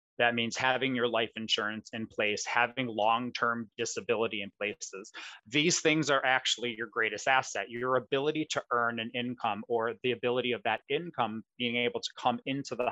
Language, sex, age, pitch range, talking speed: English, male, 20-39, 115-135 Hz, 175 wpm